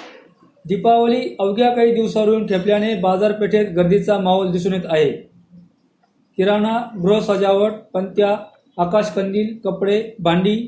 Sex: male